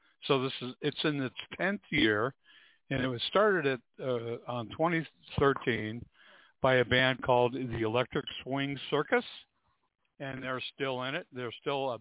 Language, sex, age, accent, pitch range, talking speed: English, male, 60-79, American, 115-150 Hz, 155 wpm